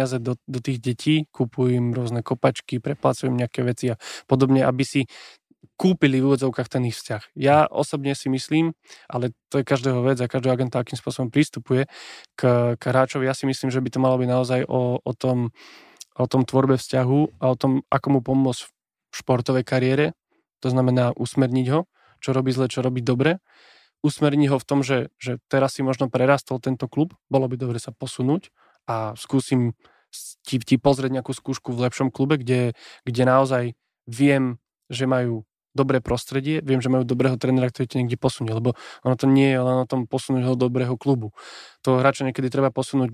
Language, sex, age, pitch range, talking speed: Slovak, male, 20-39, 125-135 Hz, 185 wpm